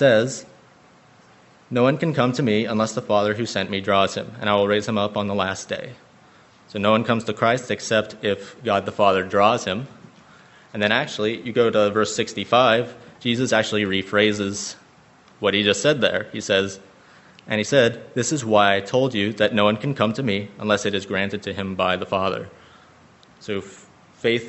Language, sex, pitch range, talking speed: English, male, 100-115 Hz, 205 wpm